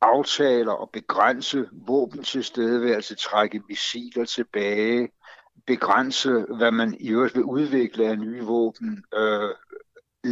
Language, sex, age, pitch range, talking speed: Danish, male, 60-79, 115-175 Hz, 115 wpm